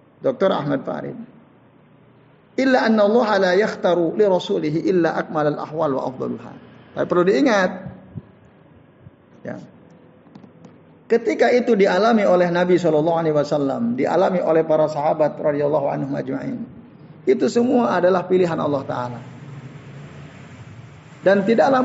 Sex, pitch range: male, 150-225 Hz